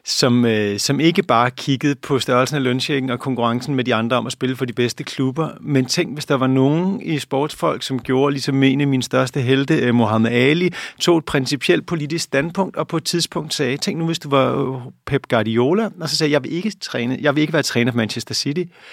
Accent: native